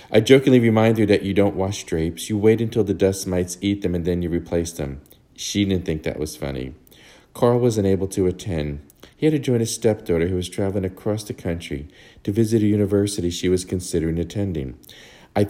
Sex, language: male, English